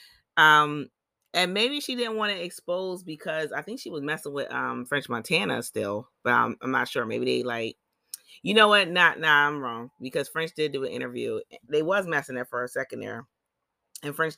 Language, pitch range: English, 125-160 Hz